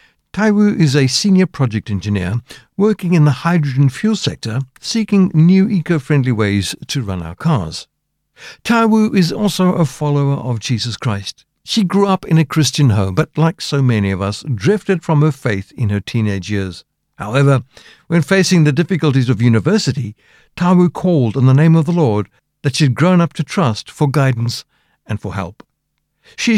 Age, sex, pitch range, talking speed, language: 60-79, male, 115-175 Hz, 170 wpm, English